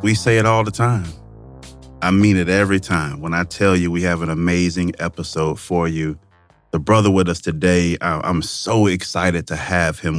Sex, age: male, 30-49